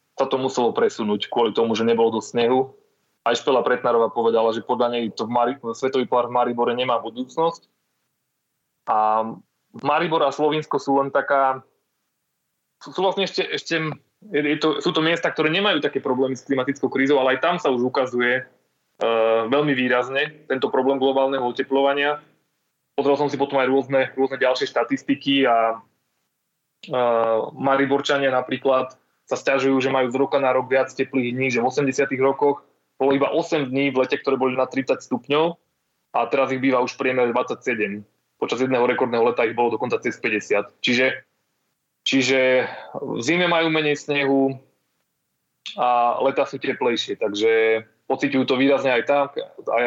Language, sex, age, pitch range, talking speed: Slovak, male, 20-39, 120-140 Hz, 160 wpm